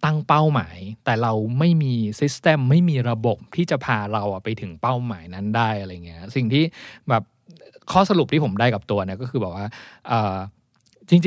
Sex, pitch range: male, 110-150 Hz